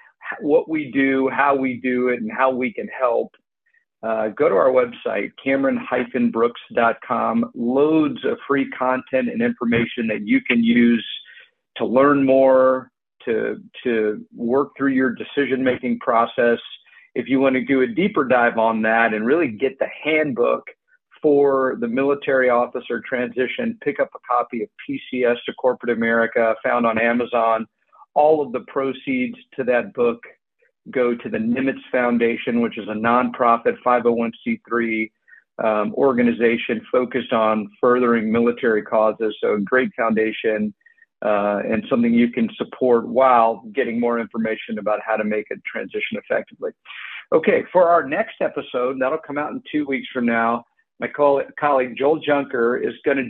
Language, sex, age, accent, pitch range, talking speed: English, male, 50-69, American, 115-145 Hz, 155 wpm